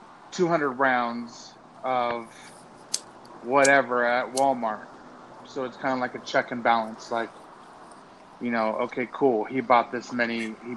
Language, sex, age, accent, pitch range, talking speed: English, male, 30-49, American, 120-145 Hz, 140 wpm